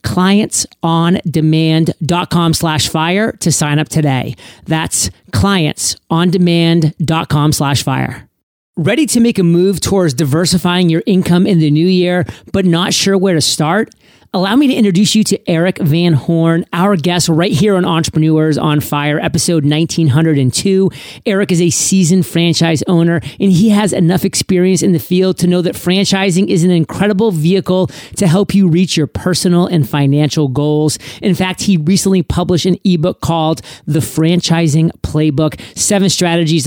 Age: 40-59